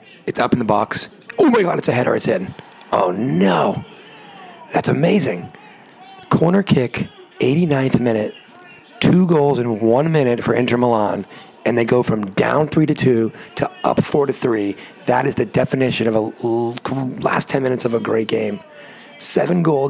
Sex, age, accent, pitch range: male, 40-59, American, 115-145 Hz